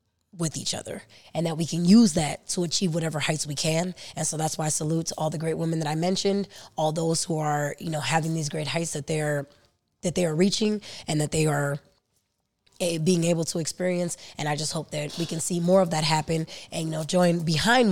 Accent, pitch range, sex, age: American, 155-190 Hz, female, 20-39